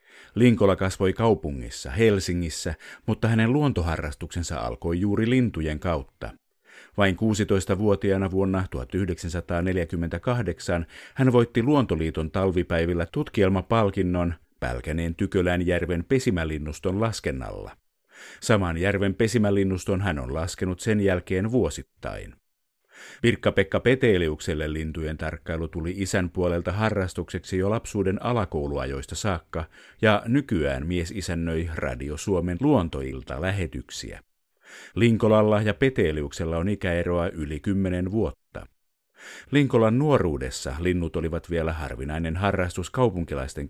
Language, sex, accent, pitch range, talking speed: Finnish, male, native, 80-100 Hz, 95 wpm